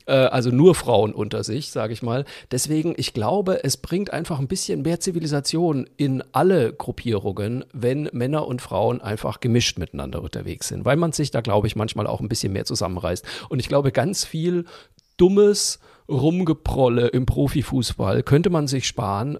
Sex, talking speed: male, 170 wpm